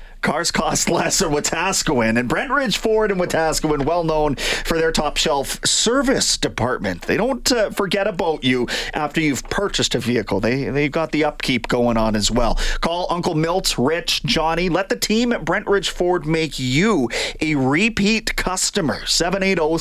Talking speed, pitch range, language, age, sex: 175 wpm, 130-180 Hz, English, 30-49, male